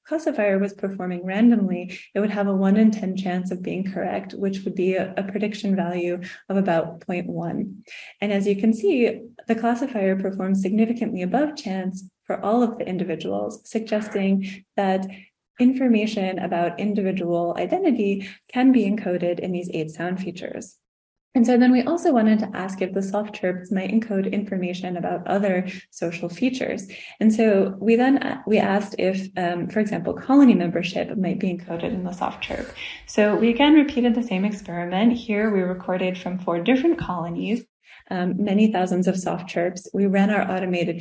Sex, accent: female, American